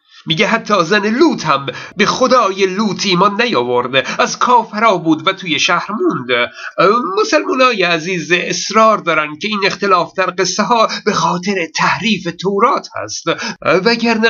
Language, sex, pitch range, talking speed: Persian, male, 160-220 Hz, 140 wpm